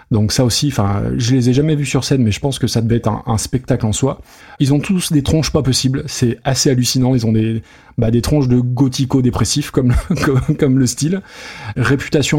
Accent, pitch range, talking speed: French, 115-140 Hz, 230 wpm